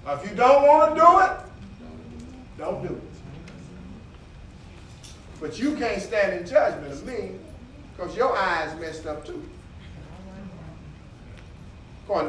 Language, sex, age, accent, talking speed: English, male, 40-59, American, 120 wpm